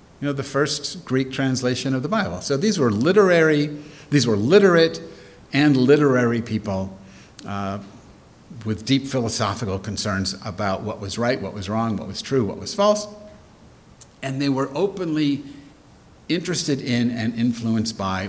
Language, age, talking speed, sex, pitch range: English, 50-69, 150 wpm, male, 95-135 Hz